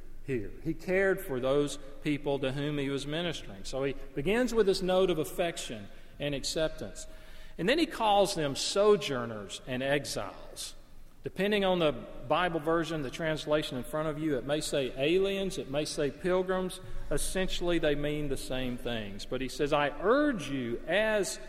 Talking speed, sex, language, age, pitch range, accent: 170 wpm, male, English, 40-59, 135-185 Hz, American